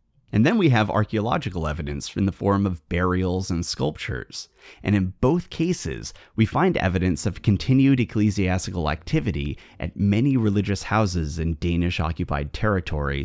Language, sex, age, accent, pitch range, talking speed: English, male, 30-49, American, 85-110 Hz, 140 wpm